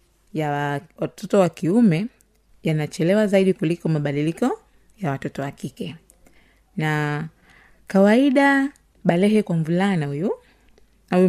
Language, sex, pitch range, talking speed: Swahili, female, 150-195 Hz, 100 wpm